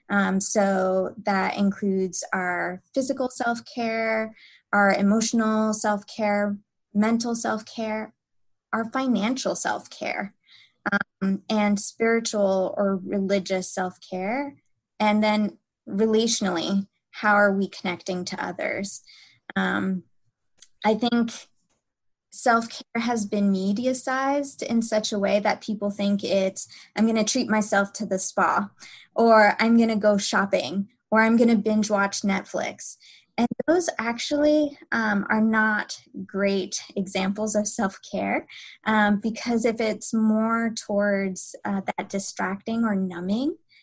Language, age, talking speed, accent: English, 20-39, 120 wpm, American